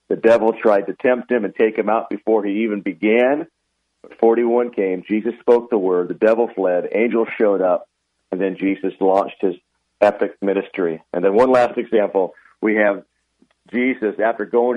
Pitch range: 100-120 Hz